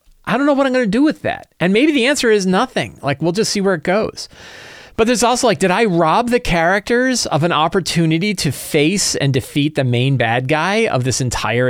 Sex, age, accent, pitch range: male, 40-59, American, 135-195 Hz